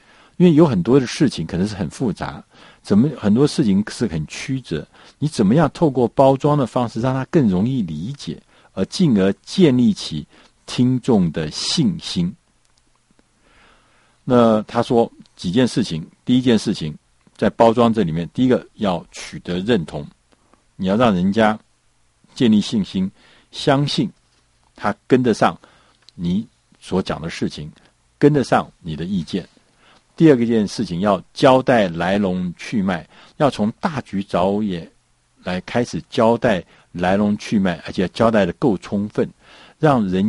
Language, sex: Chinese, male